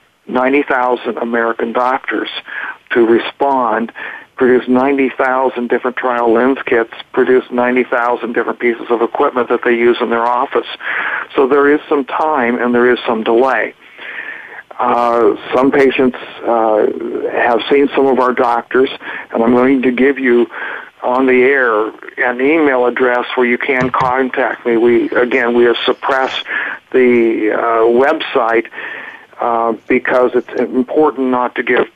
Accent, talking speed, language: American, 140 wpm, English